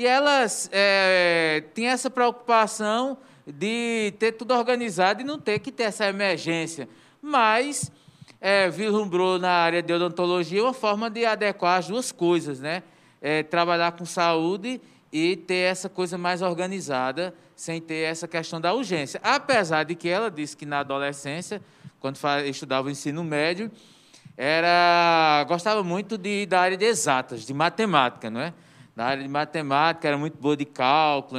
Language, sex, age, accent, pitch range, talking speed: Portuguese, male, 20-39, Brazilian, 145-195 Hz, 155 wpm